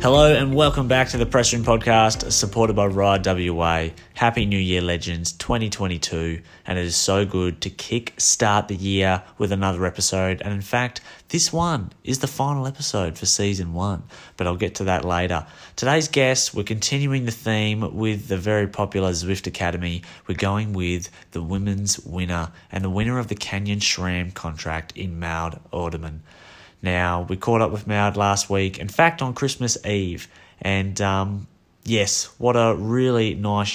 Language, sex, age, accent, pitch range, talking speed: English, male, 20-39, Australian, 90-110 Hz, 175 wpm